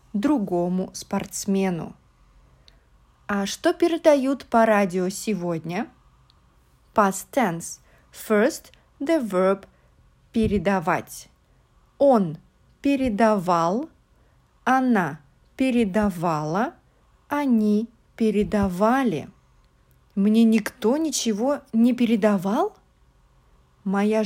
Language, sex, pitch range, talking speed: English, female, 180-240 Hz, 65 wpm